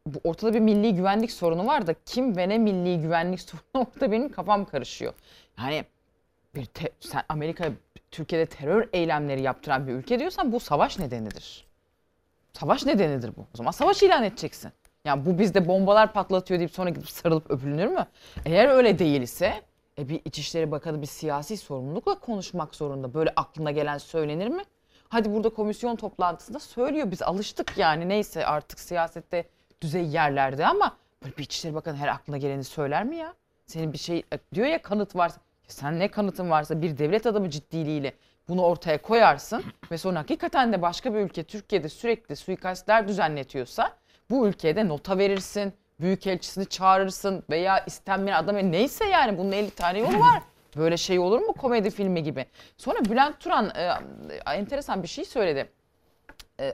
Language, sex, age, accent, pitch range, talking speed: Turkish, female, 30-49, native, 155-210 Hz, 165 wpm